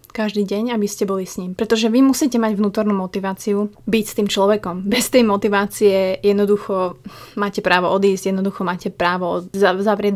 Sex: female